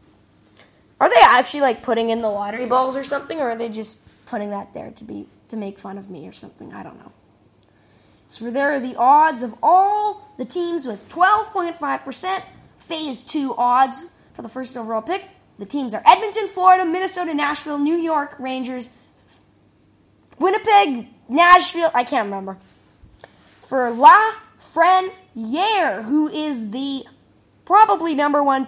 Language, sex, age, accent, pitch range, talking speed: English, female, 20-39, American, 235-330 Hz, 155 wpm